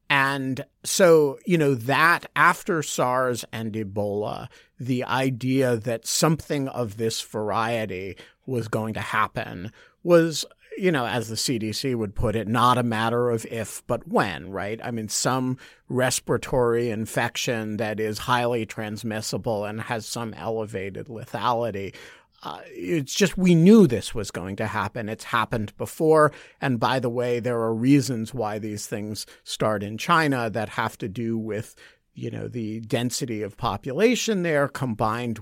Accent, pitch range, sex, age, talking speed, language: American, 110-140 Hz, male, 50-69, 150 wpm, English